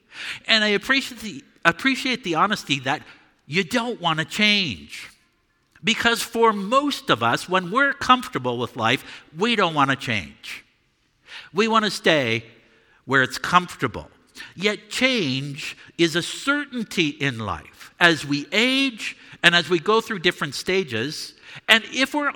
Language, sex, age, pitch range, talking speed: English, male, 60-79, 155-235 Hz, 145 wpm